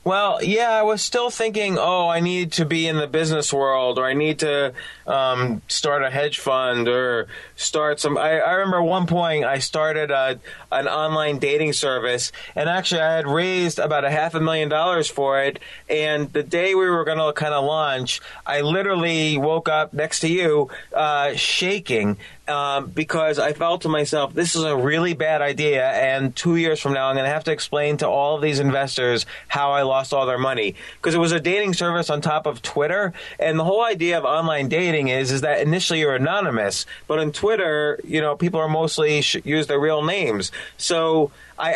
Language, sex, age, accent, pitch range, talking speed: English, male, 20-39, American, 145-170 Hz, 205 wpm